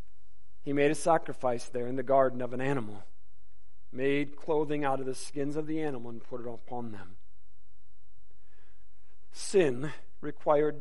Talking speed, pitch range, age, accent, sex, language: 150 wpm, 100-155 Hz, 40-59, American, male, English